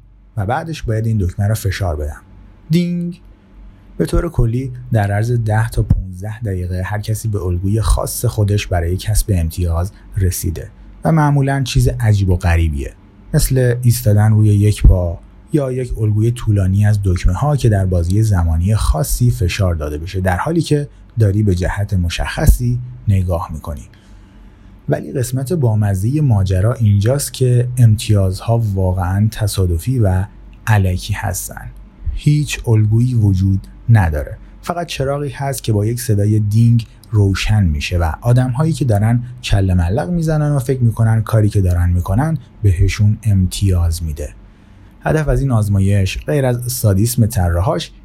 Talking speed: 140 wpm